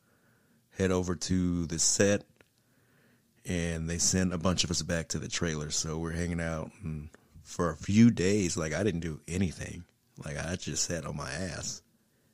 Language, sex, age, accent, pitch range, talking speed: English, male, 30-49, American, 80-95 Hz, 180 wpm